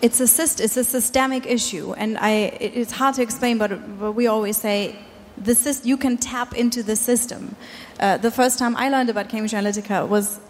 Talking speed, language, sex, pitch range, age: 210 wpm, German, female, 210-250 Hz, 30-49